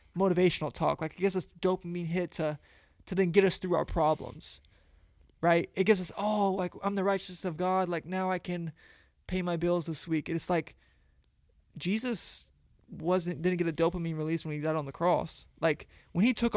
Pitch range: 150-185 Hz